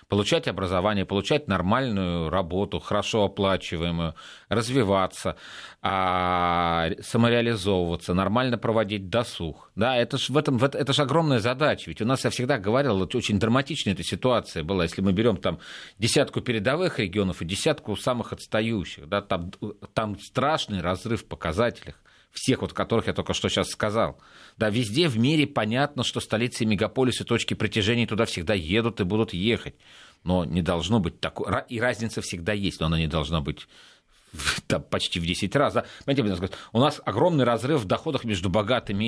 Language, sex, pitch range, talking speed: Russian, male, 95-120 Hz, 155 wpm